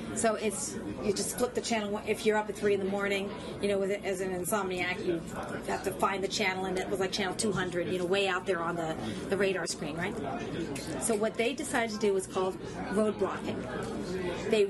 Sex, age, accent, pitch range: female, 40-59, American, 185-215 Hz